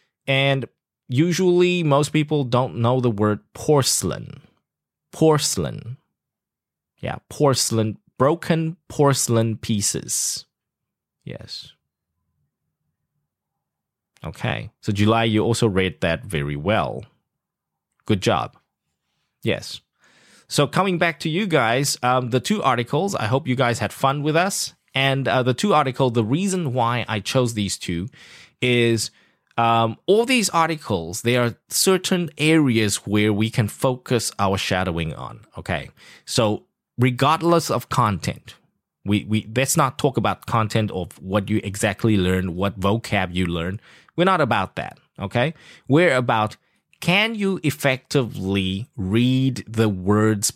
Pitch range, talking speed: 100-145 Hz, 130 wpm